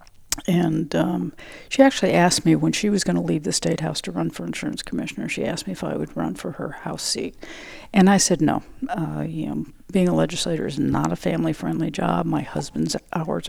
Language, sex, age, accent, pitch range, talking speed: English, female, 50-69, American, 155-200 Hz, 220 wpm